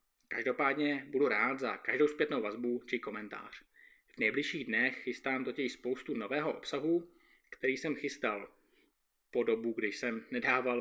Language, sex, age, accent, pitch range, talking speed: Czech, male, 20-39, native, 125-165 Hz, 140 wpm